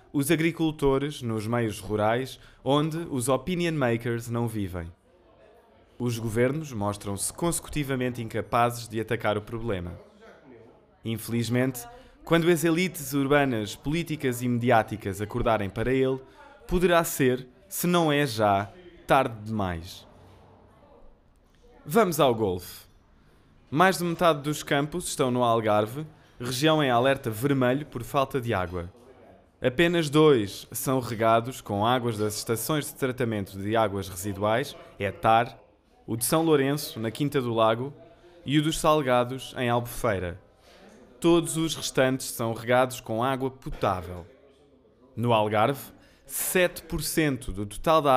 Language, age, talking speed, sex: Portuguese, 20-39, 125 wpm, male